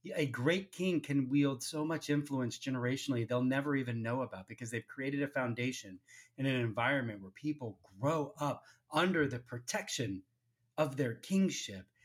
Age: 30-49